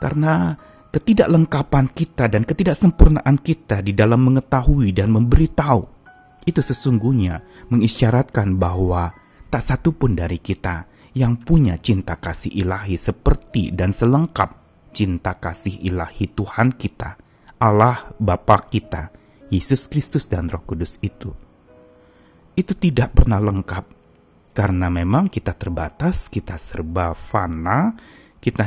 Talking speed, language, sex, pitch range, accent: 110 wpm, Indonesian, male, 95-135 Hz, native